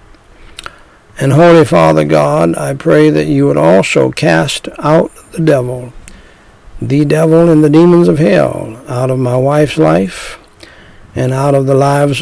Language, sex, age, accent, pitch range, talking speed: English, male, 60-79, American, 105-145 Hz, 150 wpm